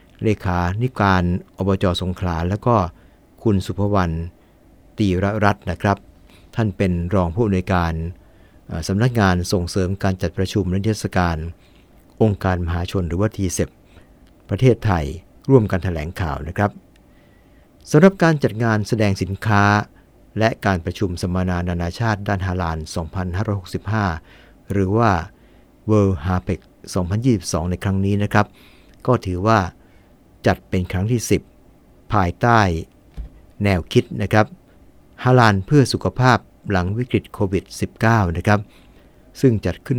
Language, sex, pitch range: English, male, 90-110 Hz